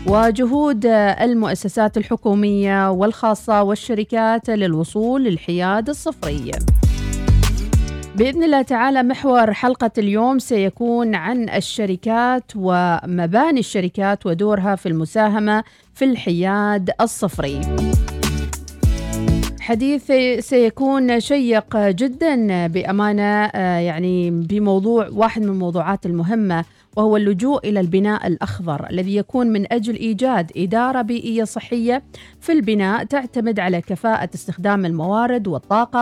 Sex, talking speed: female, 95 wpm